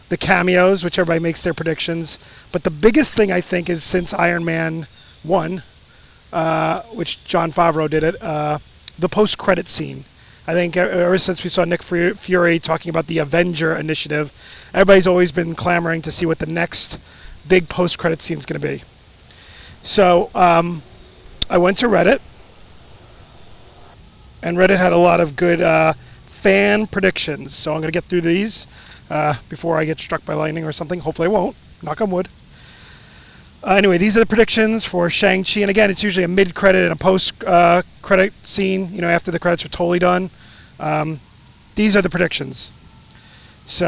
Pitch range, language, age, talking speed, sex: 160-185 Hz, English, 30-49, 180 wpm, male